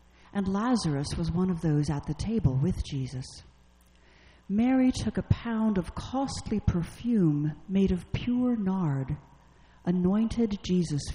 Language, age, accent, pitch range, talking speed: English, 50-69, American, 125-200 Hz, 130 wpm